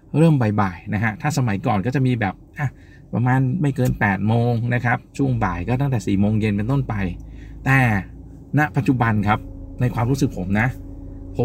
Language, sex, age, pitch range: Thai, male, 20-39, 95-125 Hz